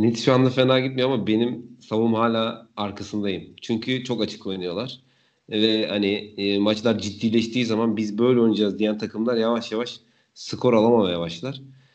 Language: Turkish